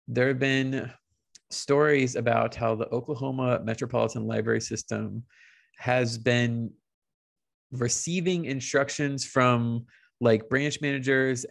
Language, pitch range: English, 115-135 Hz